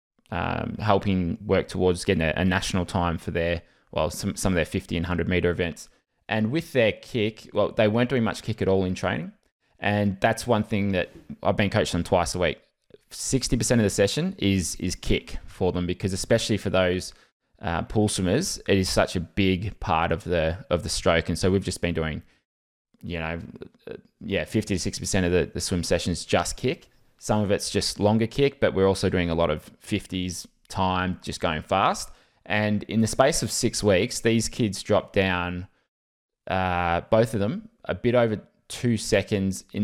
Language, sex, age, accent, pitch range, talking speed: English, male, 20-39, Australian, 90-105 Hz, 195 wpm